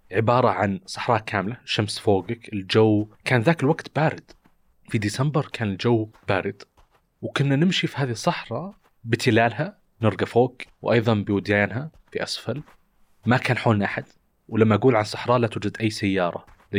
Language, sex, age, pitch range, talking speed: Arabic, male, 30-49, 95-125 Hz, 145 wpm